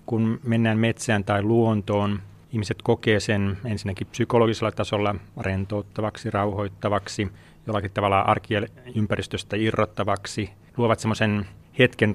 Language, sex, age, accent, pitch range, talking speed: Finnish, male, 30-49, native, 100-110 Hz, 100 wpm